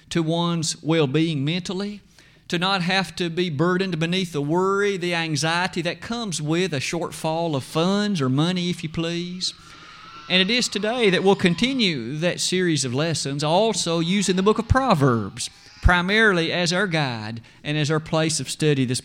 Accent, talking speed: American, 175 wpm